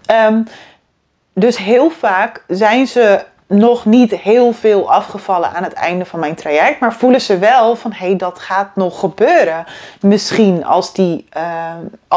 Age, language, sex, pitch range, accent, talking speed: 30-49, Dutch, female, 185-220 Hz, Dutch, 155 wpm